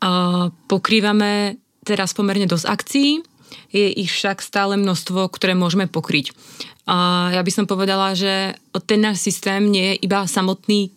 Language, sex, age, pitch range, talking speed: Czech, female, 20-39, 185-210 Hz, 140 wpm